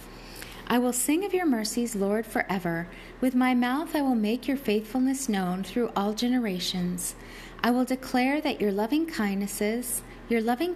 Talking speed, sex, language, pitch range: 160 wpm, female, English, 190-250 Hz